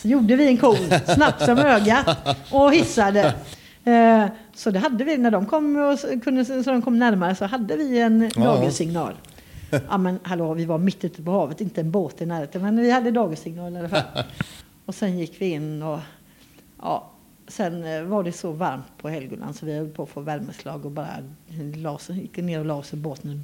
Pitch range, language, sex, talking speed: 165-225 Hz, Swedish, female, 195 wpm